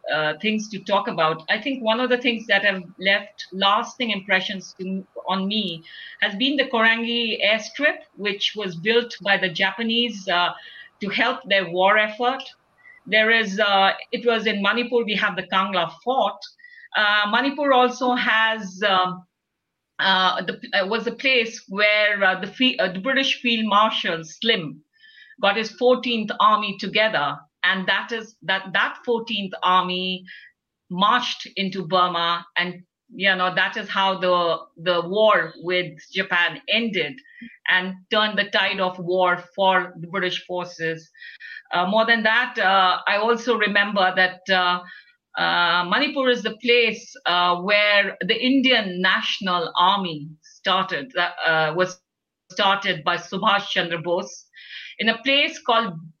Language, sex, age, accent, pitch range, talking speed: English, female, 50-69, Indian, 185-230 Hz, 145 wpm